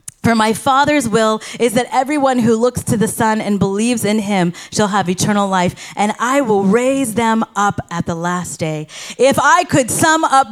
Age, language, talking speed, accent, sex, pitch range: 30-49, English, 200 wpm, American, female, 205-295 Hz